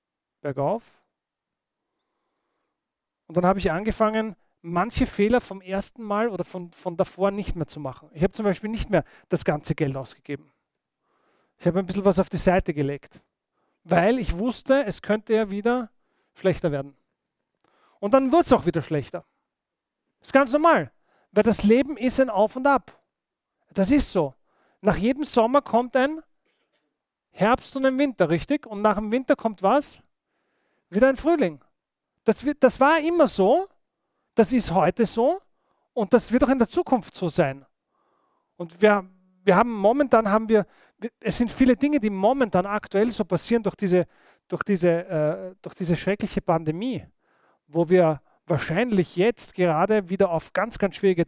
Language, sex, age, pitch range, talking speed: German, male, 40-59, 175-235 Hz, 160 wpm